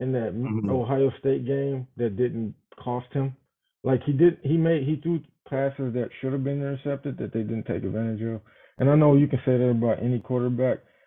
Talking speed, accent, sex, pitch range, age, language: 205 wpm, American, male, 115-135 Hz, 20-39, English